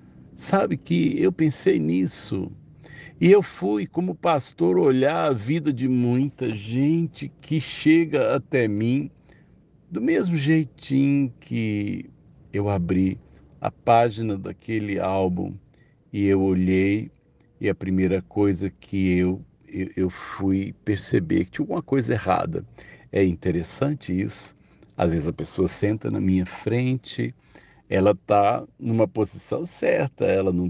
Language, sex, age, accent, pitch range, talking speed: Portuguese, male, 60-79, Brazilian, 95-130 Hz, 125 wpm